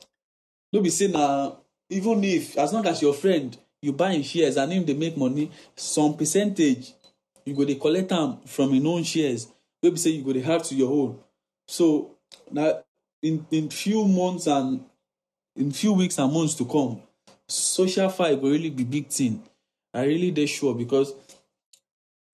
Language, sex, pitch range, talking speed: English, male, 135-170 Hz, 175 wpm